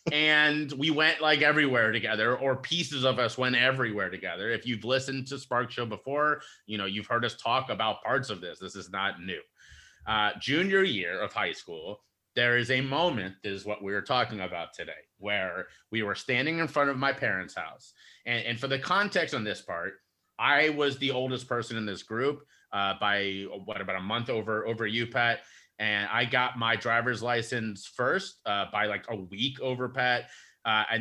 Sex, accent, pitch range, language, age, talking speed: male, American, 110-135 Hz, English, 30-49, 195 wpm